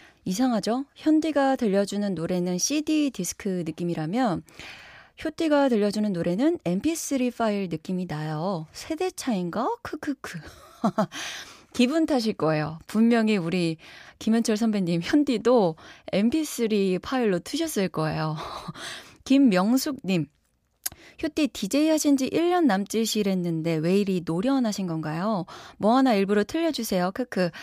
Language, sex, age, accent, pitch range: Korean, female, 20-39, native, 185-275 Hz